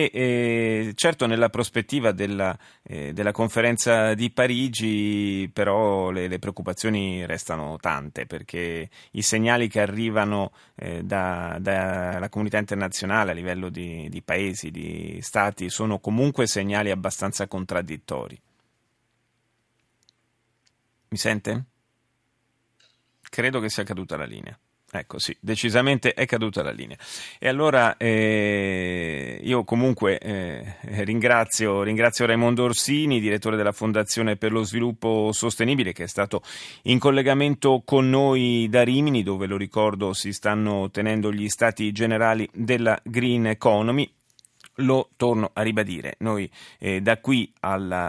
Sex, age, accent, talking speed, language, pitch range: male, 30-49, native, 120 wpm, Italian, 100-120 Hz